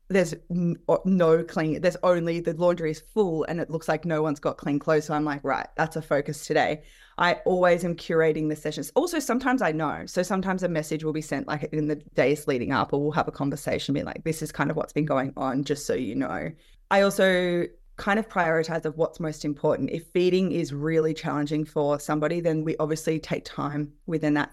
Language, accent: English, Australian